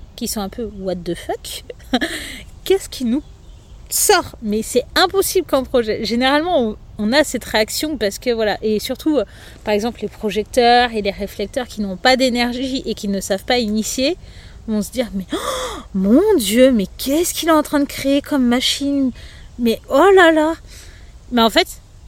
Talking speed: 180 wpm